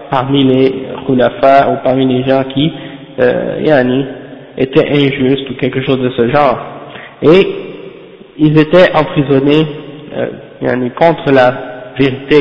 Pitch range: 130-150 Hz